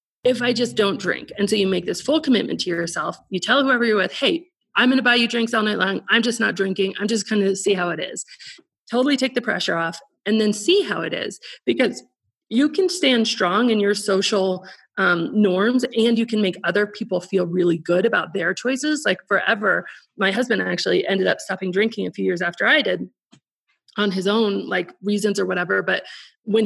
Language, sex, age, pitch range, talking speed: English, female, 30-49, 190-235 Hz, 220 wpm